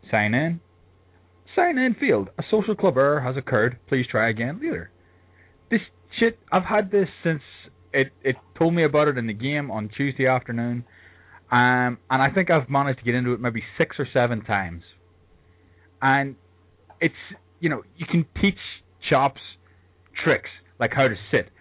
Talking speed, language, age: 170 wpm, English, 20-39